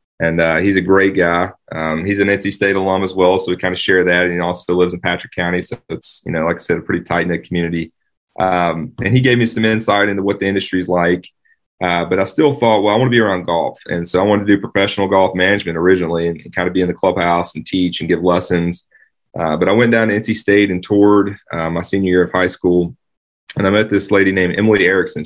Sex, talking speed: male, 260 wpm